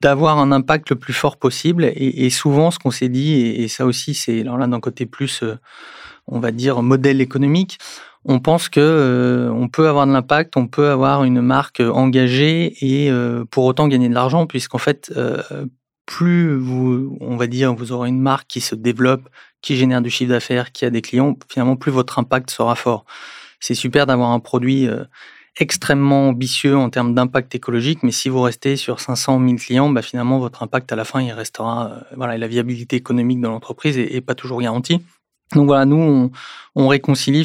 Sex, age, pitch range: male, 30-49, 120-140 Hz